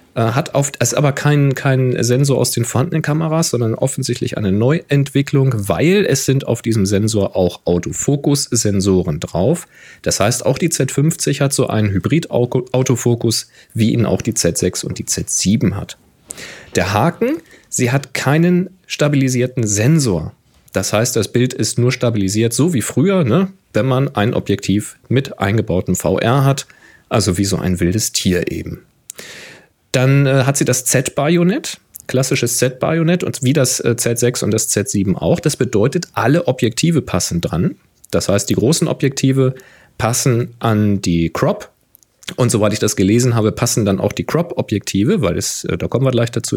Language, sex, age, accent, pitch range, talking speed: German, male, 40-59, German, 110-140 Hz, 155 wpm